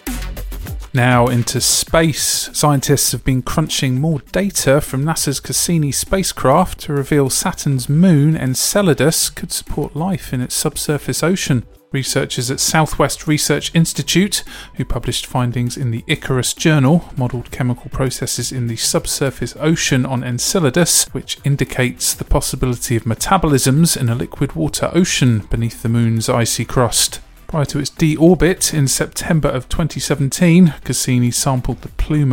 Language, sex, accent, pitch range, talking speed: English, male, British, 125-155 Hz, 135 wpm